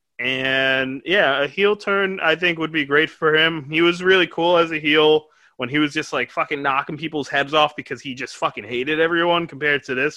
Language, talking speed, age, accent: English, 225 wpm, 20-39, American